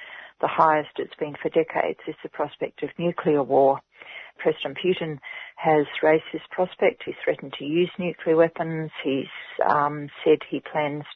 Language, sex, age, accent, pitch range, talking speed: English, female, 40-59, Australian, 140-165 Hz, 155 wpm